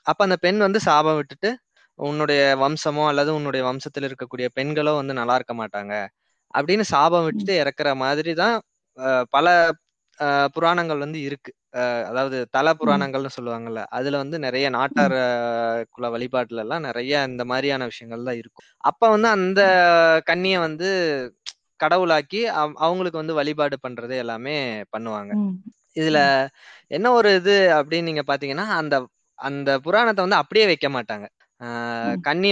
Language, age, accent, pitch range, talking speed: Tamil, 20-39, native, 130-170 Hz, 135 wpm